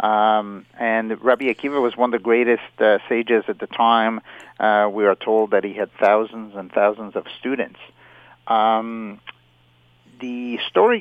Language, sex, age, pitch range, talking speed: English, male, 50-69, 105-120 Hz, 160 wpm